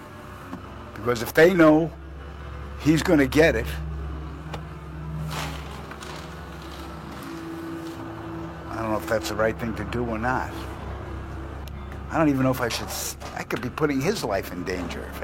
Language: English